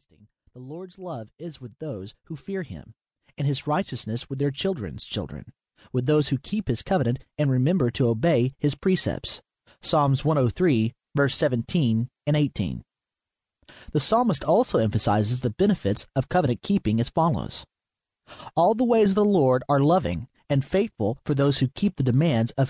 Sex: male